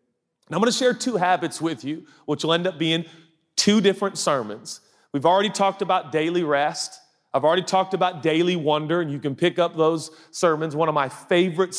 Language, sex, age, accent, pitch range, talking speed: English, male, 40-59, American, 140-180 Hz, 205 wpm